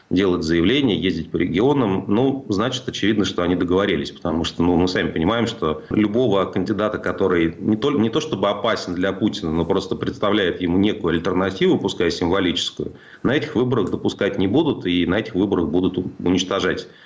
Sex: male